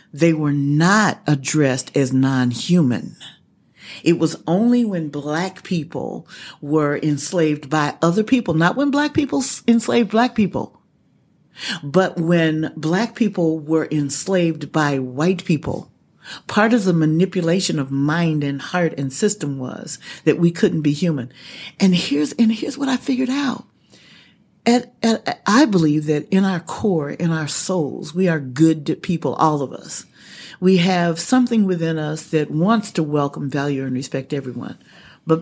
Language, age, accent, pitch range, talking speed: English, 50-69, American, 150-210 Hz, 145 wpm